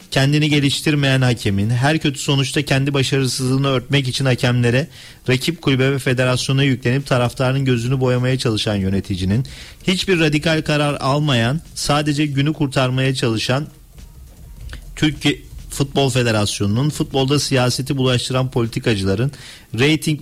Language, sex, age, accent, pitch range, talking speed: Turkish, male, 40-59, native, 120-140 Hz, 110 wpm